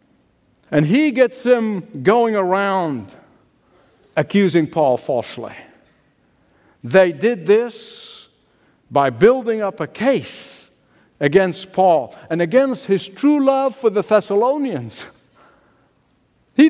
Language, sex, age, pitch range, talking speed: English, male, 60-79, 195-235 Hz, 100 wpm